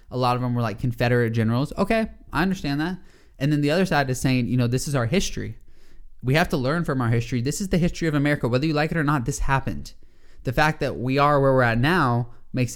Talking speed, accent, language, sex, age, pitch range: 265 wpm, American, English, male, 20-39, 115-145 Hz